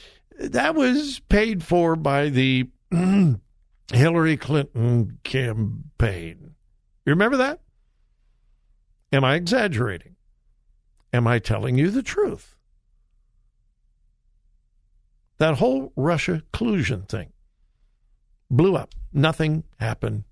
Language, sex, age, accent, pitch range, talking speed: English, male, 60-79, American, 130-175 Hz, 90 wpm